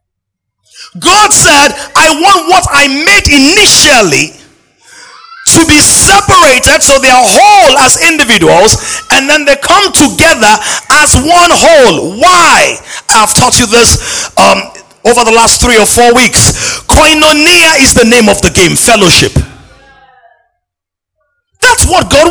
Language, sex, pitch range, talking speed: English, male, 230-350 Hz, 130 wpm